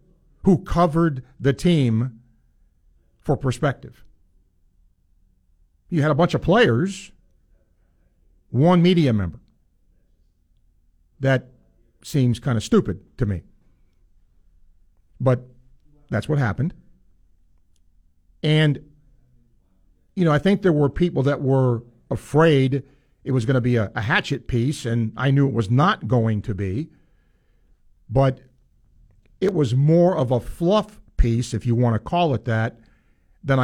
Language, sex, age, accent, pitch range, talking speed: English, male, 50-69, American, 90-150 Hz, 125 wpm